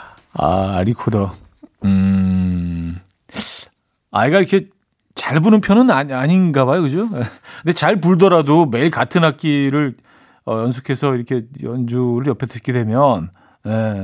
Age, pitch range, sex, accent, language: 40-59, 120-165 Hz, male, native, Korean